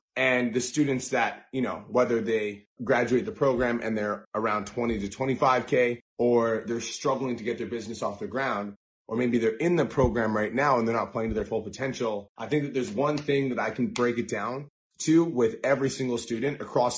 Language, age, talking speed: English, 20-39, 215 wpm